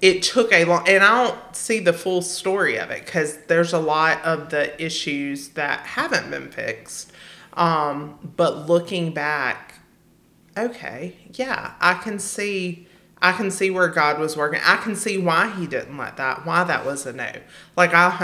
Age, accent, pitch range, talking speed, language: 30-49, American, 145-175 Hz, 185 wpm, English